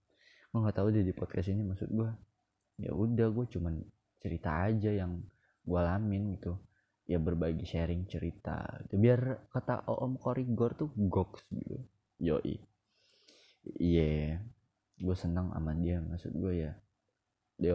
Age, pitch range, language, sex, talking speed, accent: 20-39, 90-110 Hz, Indonesian, male, 135 wpm, native